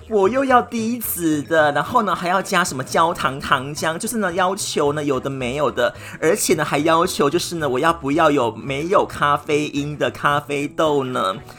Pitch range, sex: 140-220 Hz, male